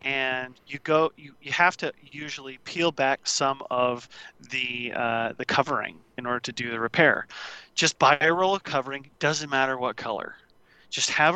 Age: 30-49